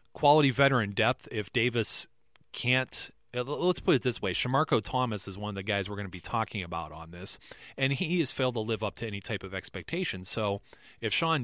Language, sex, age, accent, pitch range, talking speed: English, male, 30-49, American, 105-125 Hz, 215 wpm